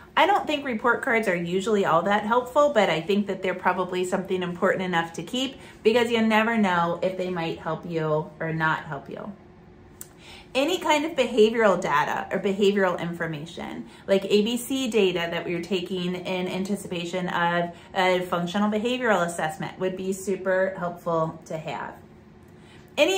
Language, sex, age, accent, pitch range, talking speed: English, female, 30-49, American, 185-255 Hz, 160 wpm